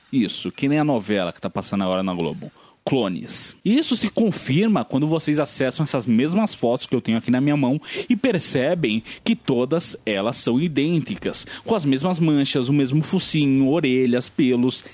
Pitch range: 115-155 Hz